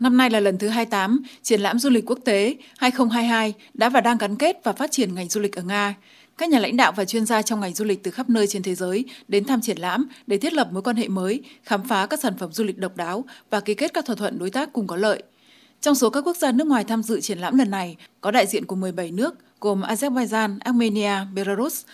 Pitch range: 200-250 Hz